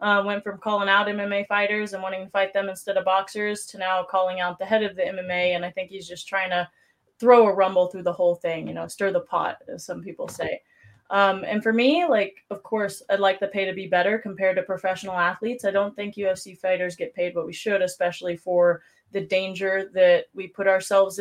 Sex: female